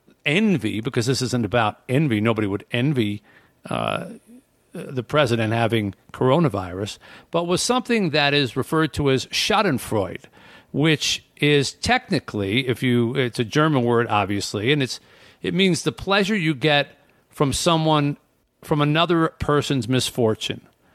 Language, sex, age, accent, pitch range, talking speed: English, male, 50-69, American, 120-155 Hz, 135 wpm